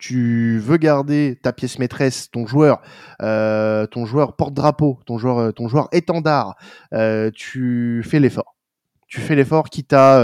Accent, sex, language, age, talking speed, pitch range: French, male, French, 20-39, 165 wpm, 115-150 Hz